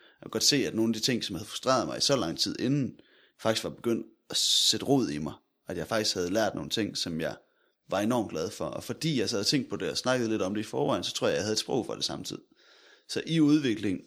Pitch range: 100-125 Hz